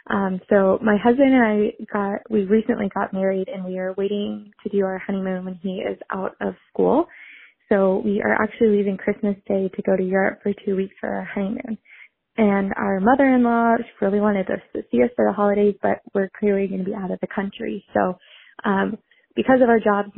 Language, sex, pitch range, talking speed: English, female, 195-230 Hz, 210 wpm